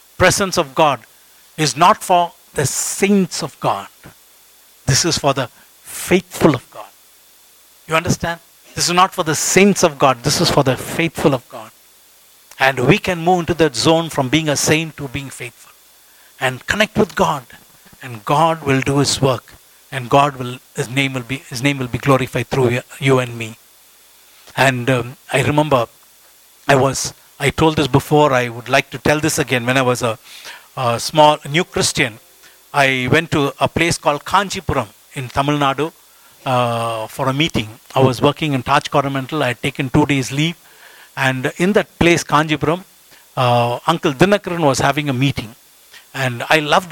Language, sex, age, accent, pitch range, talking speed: English, male, 60-79, Indian, 130-160 Hz, 180 wpm